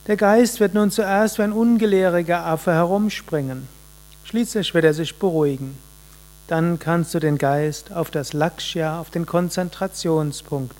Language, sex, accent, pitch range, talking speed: German, male, German, 150-175 Hz, 145 wpm